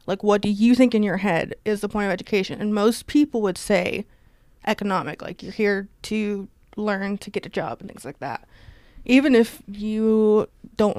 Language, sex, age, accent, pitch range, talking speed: English, female, 20-39, American, 200-225 Hz, 195 wpm